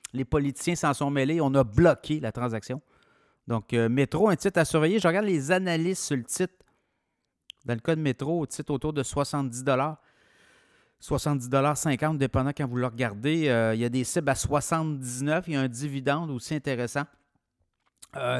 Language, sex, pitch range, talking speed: French, male, 120-150 Hz, 185 wpm